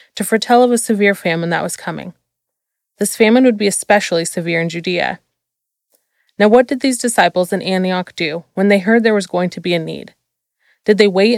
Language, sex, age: English, female, 20-39